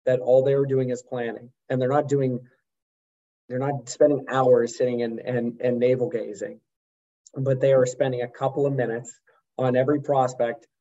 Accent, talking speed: American, 180 wpm